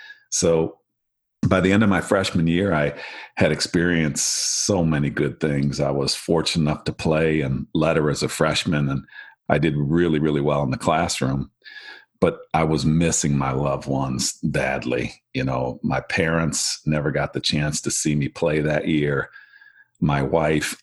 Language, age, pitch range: English, 50-69, 70-80 Hz